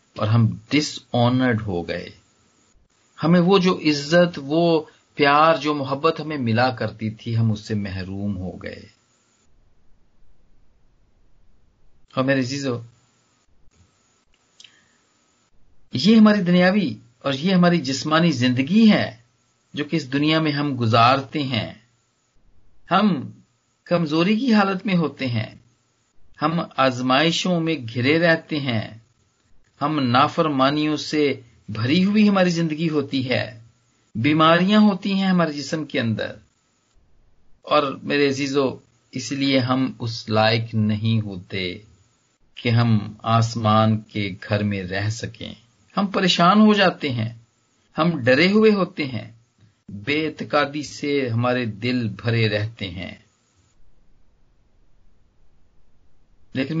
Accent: native